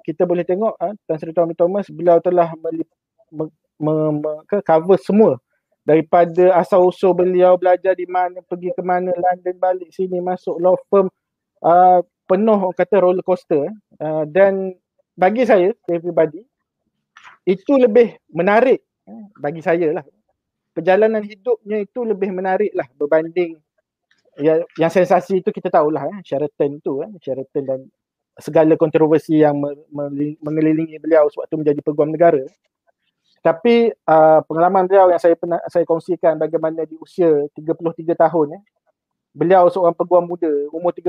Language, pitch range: Malay, 160-190 Hz